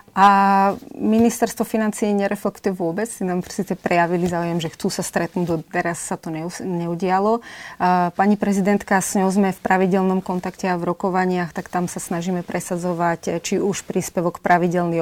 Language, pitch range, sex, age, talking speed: Slovak, 180-215 Hz, female, 30-49, 150 wpm